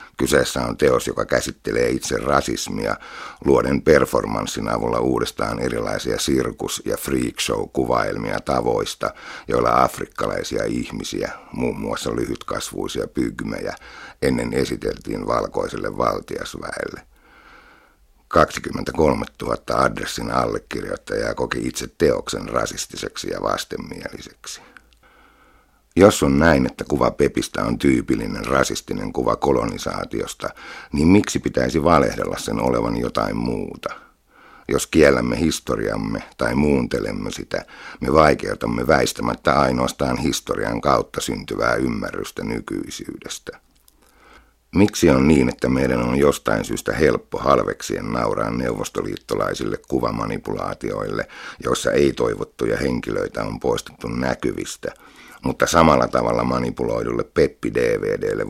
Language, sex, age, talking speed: Finnish, male, 60-79, 95 wpm